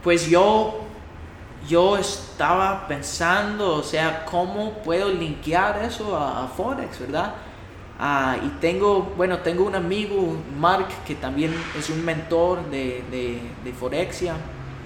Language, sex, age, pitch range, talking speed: Spanish, male, 20-39, 140-195 Hz, 125 wpm